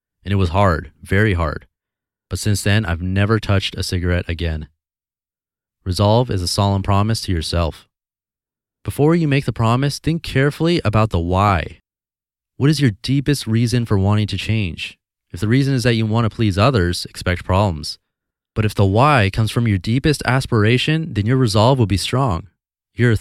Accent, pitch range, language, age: American, 90-120 Hz, English, 30-49